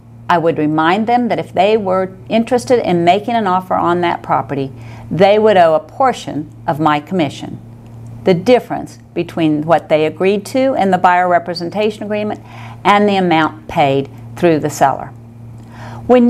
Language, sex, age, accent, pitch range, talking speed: English, female, 50-69, American, 140-210 Hz, 160 wpm